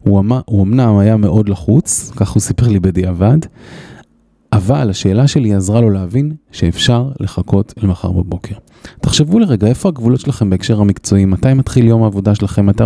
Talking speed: 165 wpm